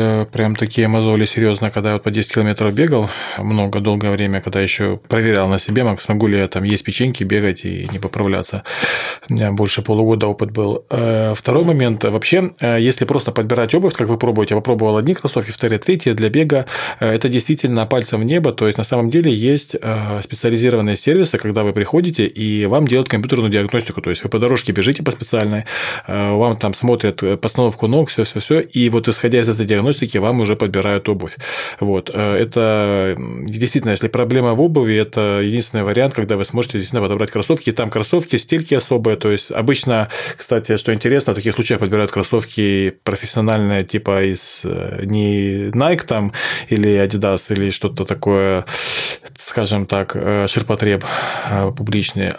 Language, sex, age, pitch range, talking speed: Russian, male, 20-39, 100-120 Hz, 165 wpm